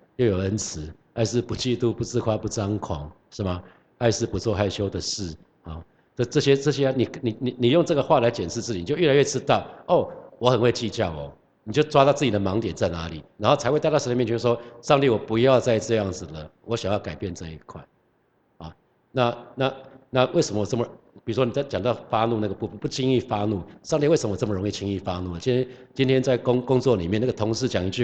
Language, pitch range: Chinese, 95-130 Hz